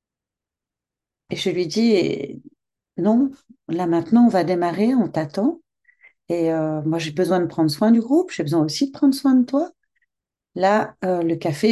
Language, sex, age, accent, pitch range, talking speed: French, female, 40-59, French, 170-245 Hz, 175 wpm